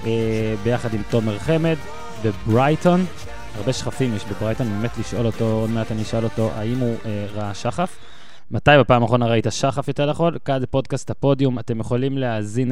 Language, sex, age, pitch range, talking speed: Hebrew, male, 20-39, 110-135 Hz, 170 wpm